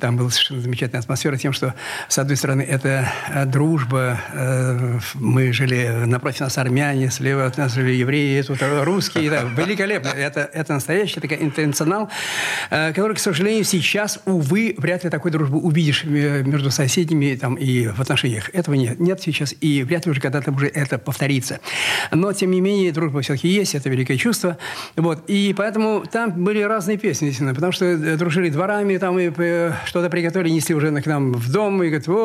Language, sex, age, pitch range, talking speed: Russian, male, 50-69, 140-185 Hz, 170 wpm